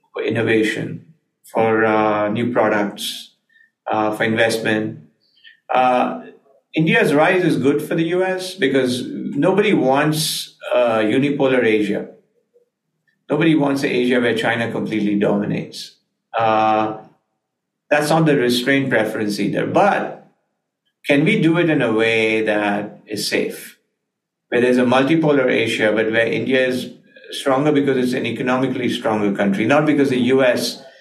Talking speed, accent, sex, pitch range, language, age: 130 wpm, Indian, male, 110-145 Hz, English, 50-69